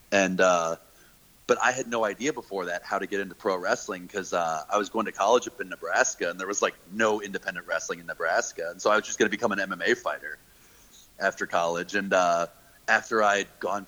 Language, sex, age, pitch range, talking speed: English, male, 30-49, 95-115 Hz, 225 wpm